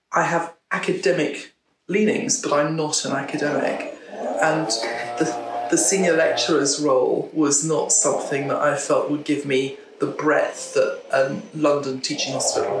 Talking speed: 145 wpm